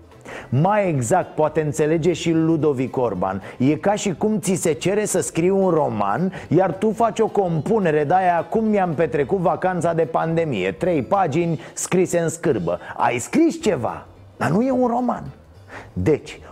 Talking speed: 165 wpm